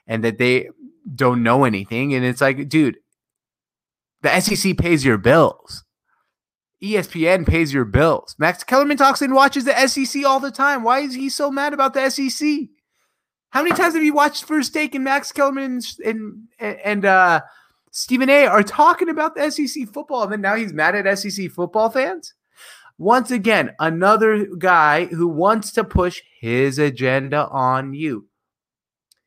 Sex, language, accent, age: male, English, American, 30-49